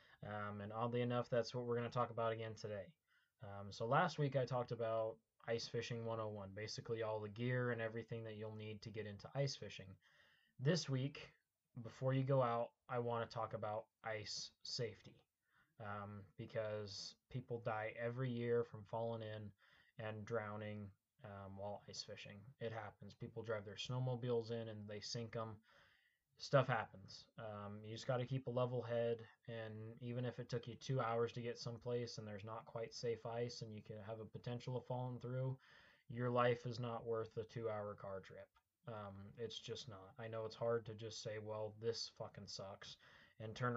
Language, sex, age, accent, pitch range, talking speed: English, male, 20-39, American, 110-120 Hz, 190 wpm